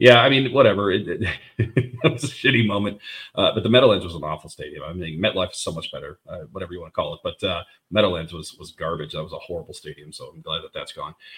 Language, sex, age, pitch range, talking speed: English, male, 40-59, 90-110 Hz, 265 wpm